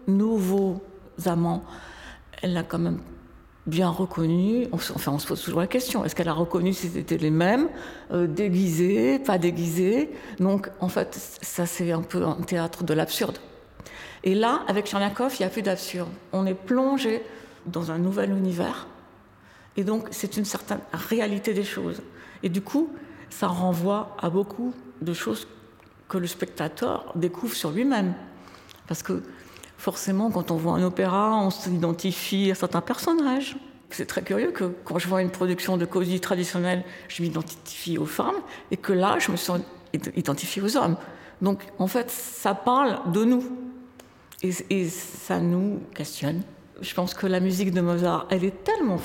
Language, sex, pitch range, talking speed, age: French, female, 175-220 Hz, 170 wpm, 60-79